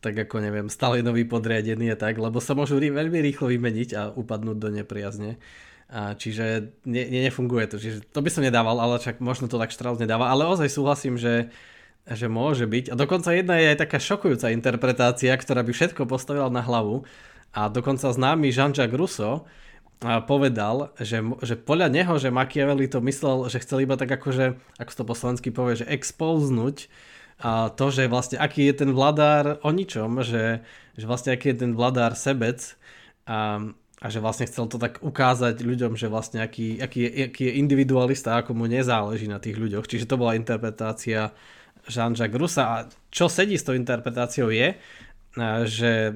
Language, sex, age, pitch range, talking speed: Slovak, male, 20-39, 115-135 Hz, 175 wpm